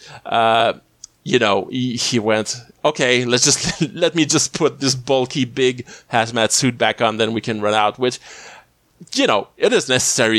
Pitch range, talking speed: 115-140 Hz, 180 wpm